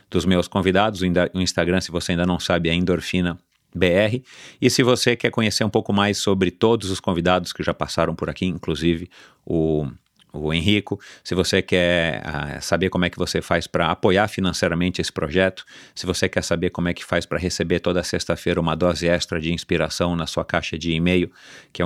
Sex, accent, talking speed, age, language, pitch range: male, Brazilian, 200 wpm, 40-59, Portuguese, 85-95 Hz